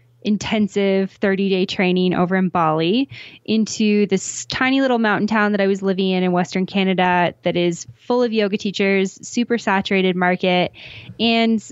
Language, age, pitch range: English, 10-29, 185-225 Hz